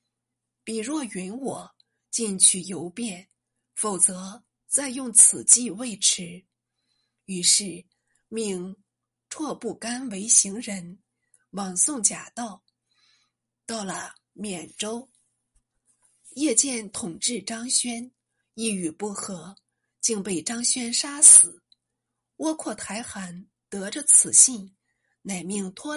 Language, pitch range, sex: Chinese, 185-245 Hz, female